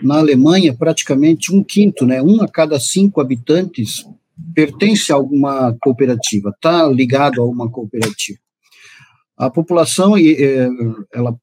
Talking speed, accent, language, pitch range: 120 wpm, Brazilian, Portuguese, 130-165 Hz